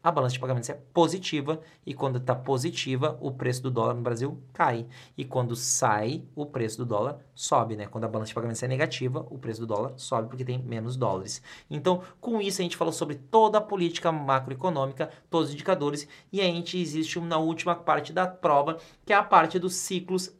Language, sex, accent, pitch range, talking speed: Portuguese, male, Brazilian, 125-175 Hz, 210 wpm